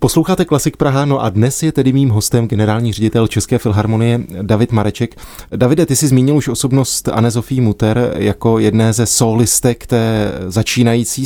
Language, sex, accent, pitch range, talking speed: Czech, male, native, 110-135 Hz, 160 wpm